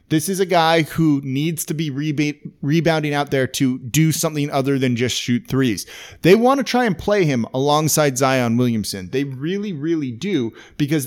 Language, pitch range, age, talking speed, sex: English, 130-175 Hz, 30-49, 185 wpm, male